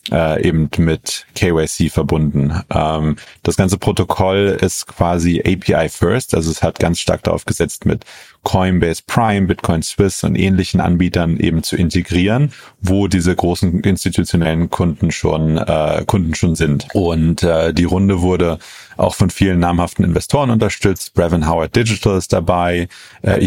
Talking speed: 150 wpm